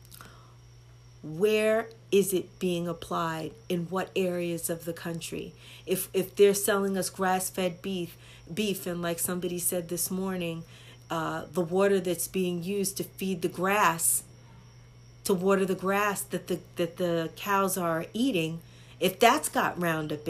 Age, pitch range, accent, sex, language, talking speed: 40-59, 170-250 Hz, American, female, English, 150 wpm